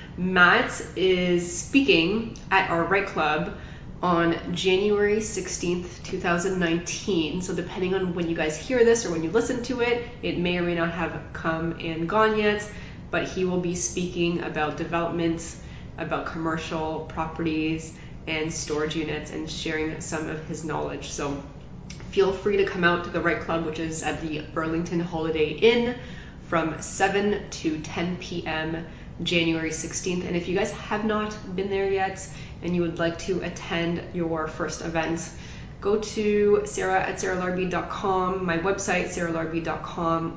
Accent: American